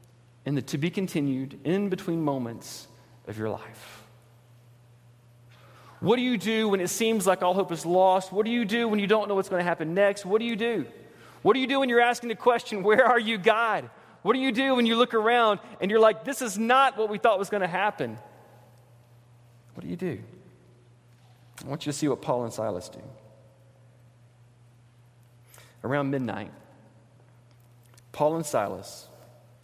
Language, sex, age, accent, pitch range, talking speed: English, male, 40-59, American, 120-150 Hz, 185 wpm